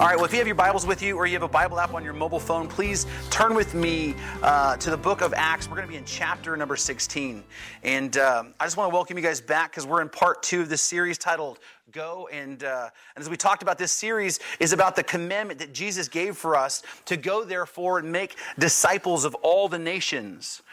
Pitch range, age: 155-200 Hz, 30-49